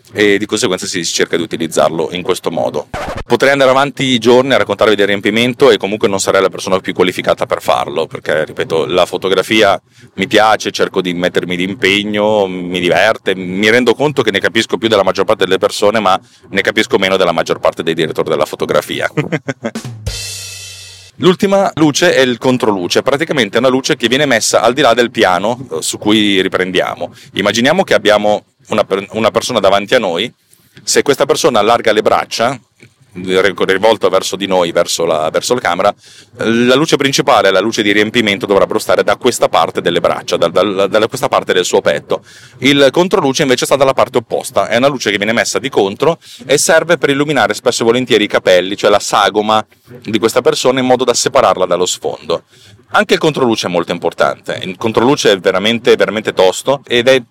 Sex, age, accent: male, 40-59, native